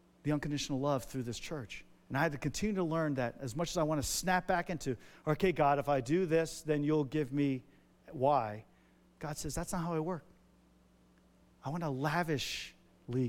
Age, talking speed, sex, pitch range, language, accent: 40-59, 205 wpm, male, 120-175 Hz, English, American